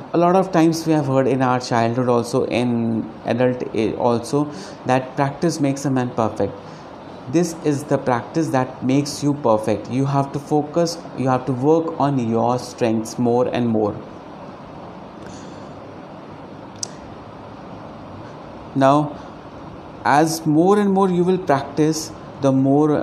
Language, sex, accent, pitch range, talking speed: Hindi, male, native, 125-155 Hz, 140 wpm